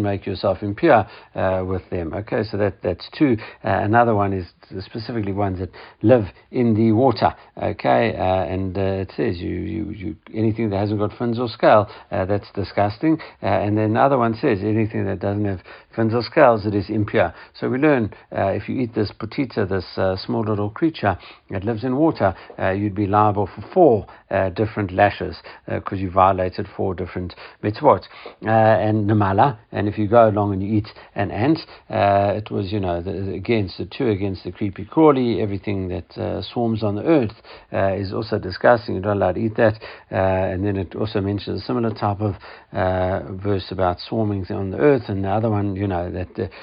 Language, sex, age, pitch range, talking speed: English, male, 60-79, 95-110 Hz, 205 wpm